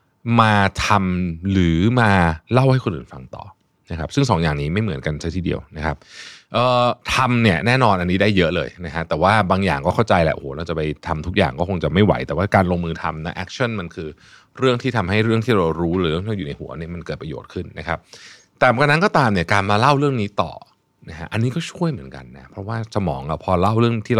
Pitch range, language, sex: 80-115 Hz, Thai, male